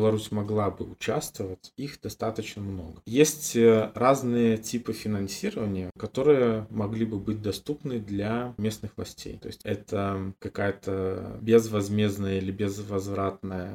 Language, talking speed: Russian, 115 wpm